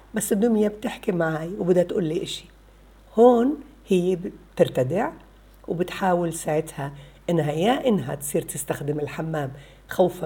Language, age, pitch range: Arabic, 60-79, 160-215 Hz